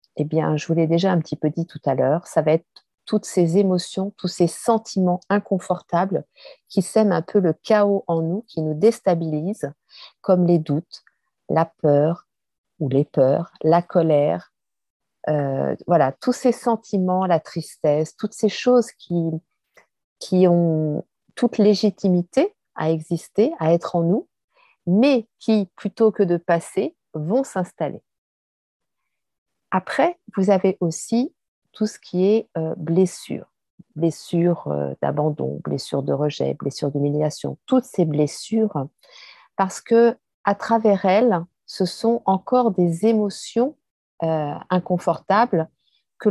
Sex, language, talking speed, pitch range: female, French, 135 wpm, 165-215 Hz